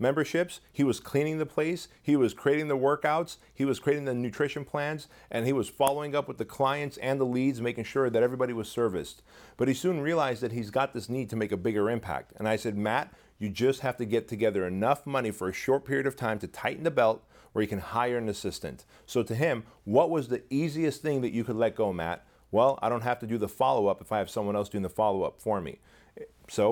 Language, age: English, 40-59